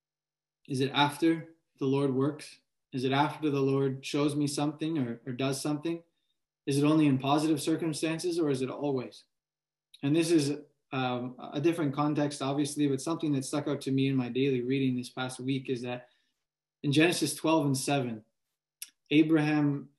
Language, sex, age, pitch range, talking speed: English, male, 20-39, 130-150 Hz, 175 wpm